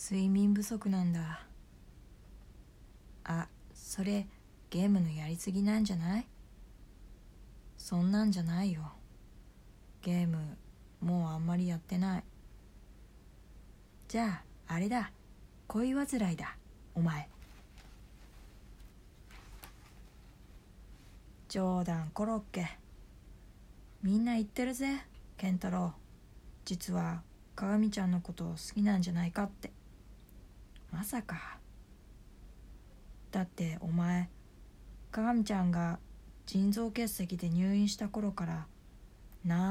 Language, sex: Japanese, female